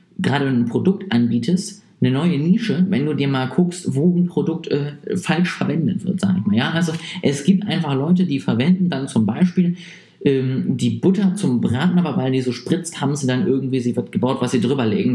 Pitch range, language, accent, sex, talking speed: 130-185 Hz, German, German, male, 205 wpm